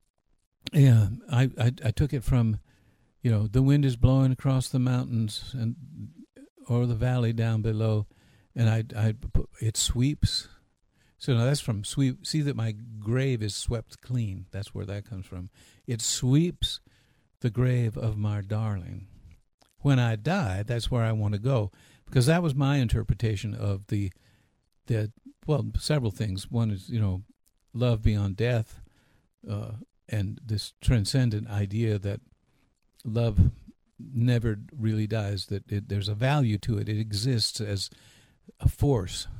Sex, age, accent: male, 60-79, American